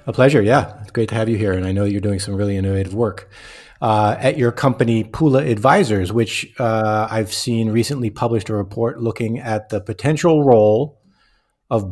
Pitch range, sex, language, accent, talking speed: 100-120 Hz, male, English, American, 190 wpm